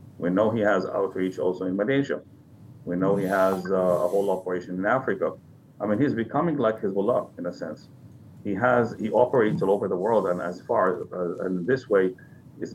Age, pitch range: 50-69, 90-100 Hz